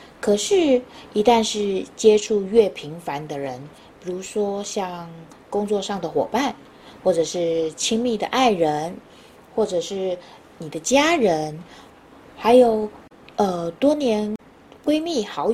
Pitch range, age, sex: 160-230 Hz, 20-39, female